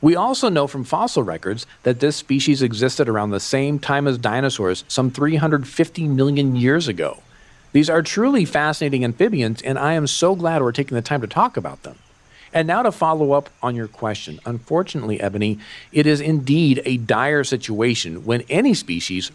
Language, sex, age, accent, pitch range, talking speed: English, male, 40-59, American, 115-155 Hz, 180 wpm